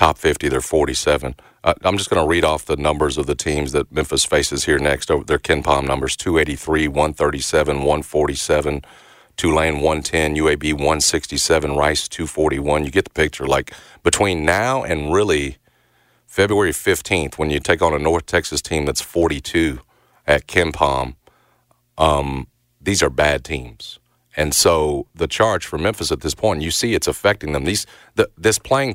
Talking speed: 170 wpm